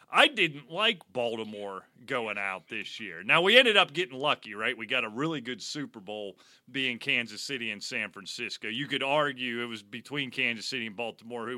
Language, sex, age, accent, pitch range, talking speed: English, male, 30-49, American, 115-145 Hz, 200 wpm